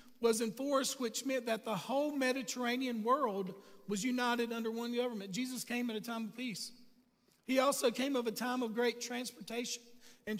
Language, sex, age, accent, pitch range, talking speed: English, male, 40-59, American, 225-255 Hz, 180 wpm